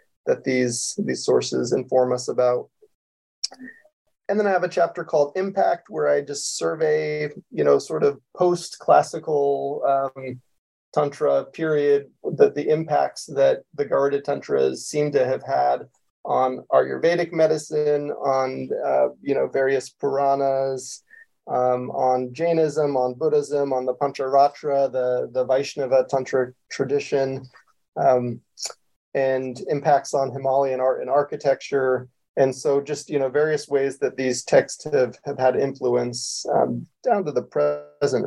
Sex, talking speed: male, 135 wpm